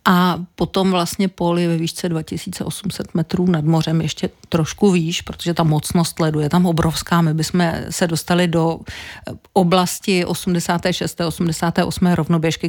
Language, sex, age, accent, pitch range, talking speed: Czech, female, 50-69, native, 165-185 Hz, 130 wpm